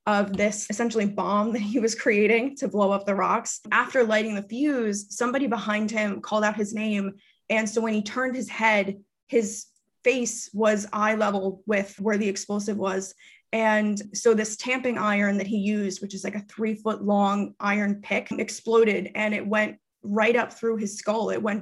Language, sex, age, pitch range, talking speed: English, female, 20-39, 205-235 Hz, 190 wpm